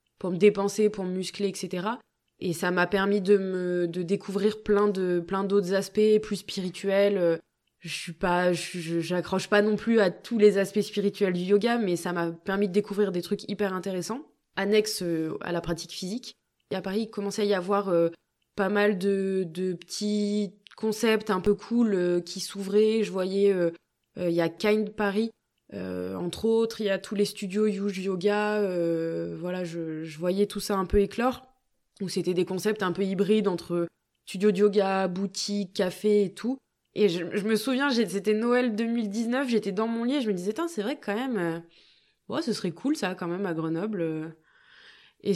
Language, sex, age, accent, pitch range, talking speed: French, female, 20-39, French, 180-210 Hz, 205 wpm